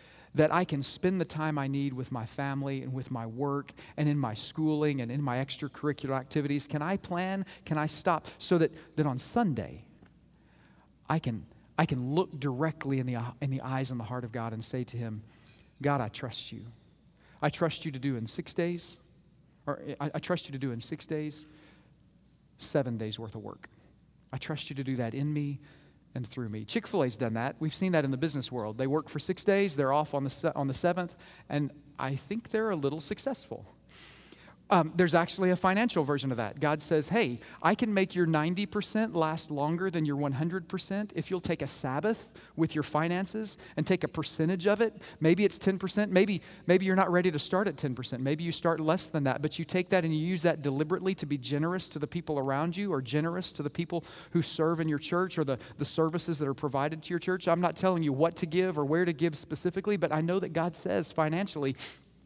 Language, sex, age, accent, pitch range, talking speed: English, male, 40-59, American, 140-175 Hz, 225 wpm